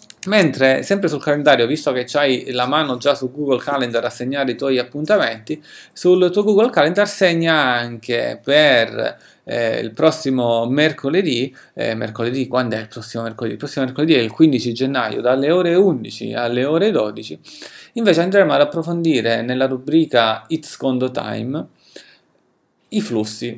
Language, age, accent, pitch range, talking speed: Italian, 30-49, native, 120-170 Hz, 155 wpm